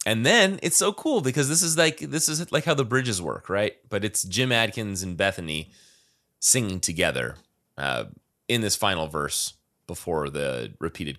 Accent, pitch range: American, 95-130 Hz